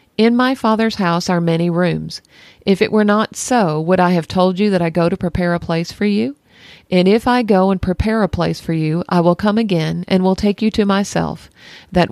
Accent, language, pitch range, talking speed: American, English, 165-205 Hz, 235 wpm